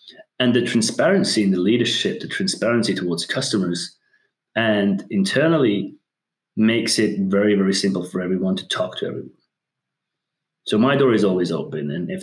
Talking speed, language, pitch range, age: 150 wpm, English, 95-135 Hz, 30-49